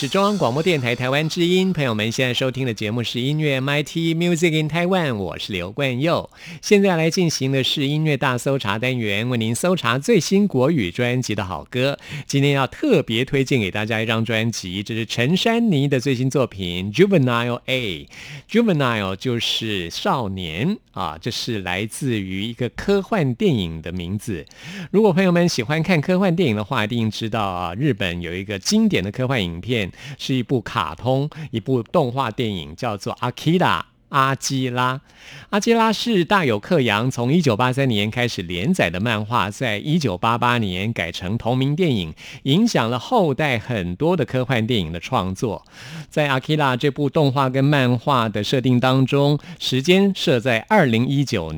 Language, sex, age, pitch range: Chinese, male, 50-69, 115-155 Hz